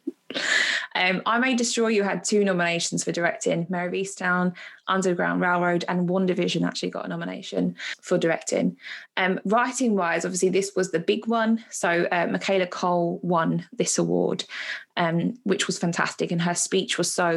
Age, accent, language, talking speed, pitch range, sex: 20-39, British, English, 165 wpm, 175-210 Hz, female